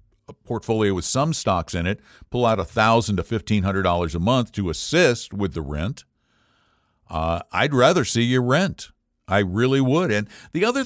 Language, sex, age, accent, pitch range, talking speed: English, male, 60-79, American, 95-125 Hz, 180 wpm